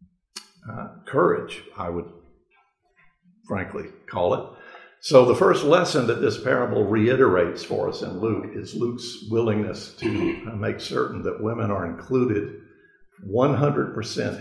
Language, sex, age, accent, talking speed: English, male, 50-69, American, 130 wpm